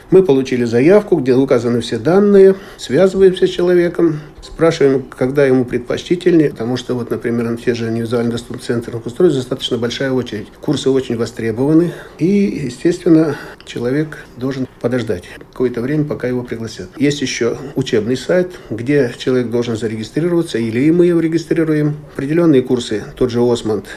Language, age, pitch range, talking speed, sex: Russian, 50-69, 115-155 Hz, 145 wpm, male